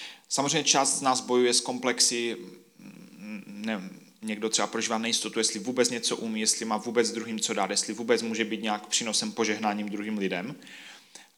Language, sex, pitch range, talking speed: Czech, male, 105-125 Hz, 160 wpm